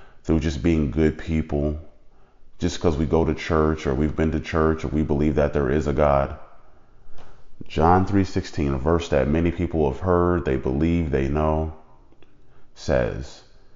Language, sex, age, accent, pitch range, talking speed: English, male, 30-49, American, 70-80 Hz, 165 wpm